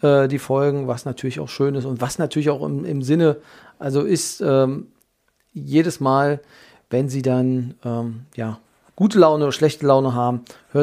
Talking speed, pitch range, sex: 165 wpm, 130-145 Hz, male